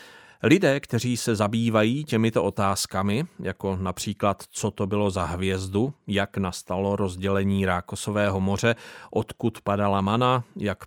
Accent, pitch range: native, 100-130 Hz